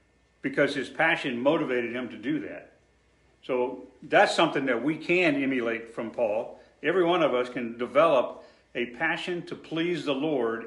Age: 50-69